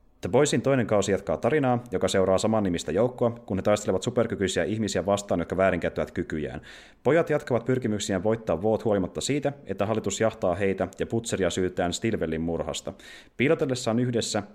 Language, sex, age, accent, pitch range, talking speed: Finnish, male, 30-49, native, 95-120 Hz, 155 wpm